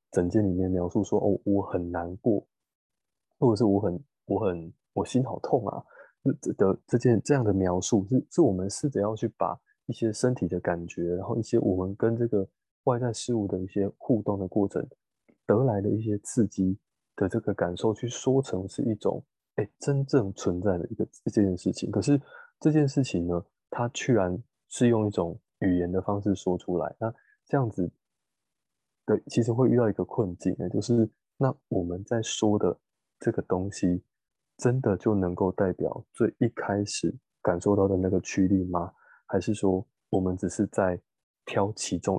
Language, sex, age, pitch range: Chinese, male, 20-39, 90-115 Hz